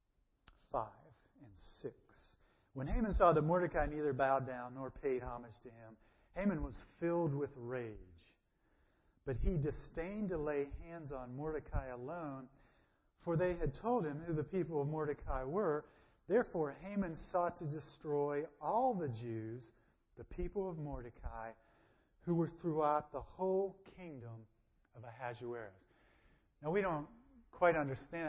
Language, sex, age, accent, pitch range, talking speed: English, male, 40-59, American, 120-165 Hz, 140 wpm